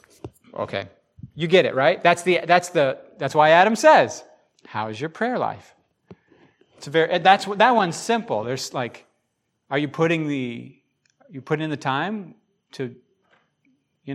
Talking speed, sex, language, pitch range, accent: 155 wpm, male, English, 130-170 Hz, American